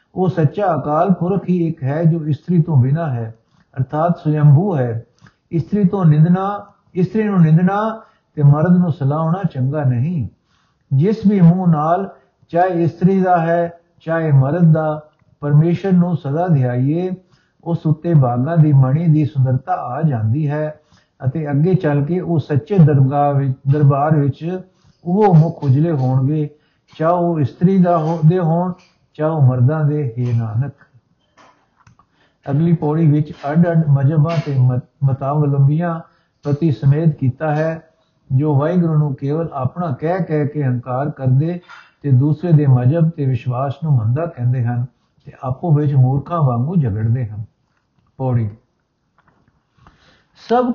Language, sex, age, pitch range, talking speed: Punjabi, male, 60-79, 140-175 Hz, 135 wpm